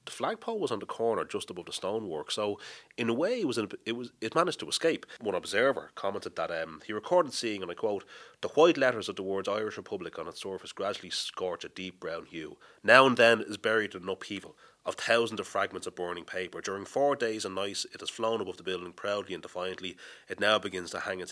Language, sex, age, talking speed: English, male, 30-49, 235 wpm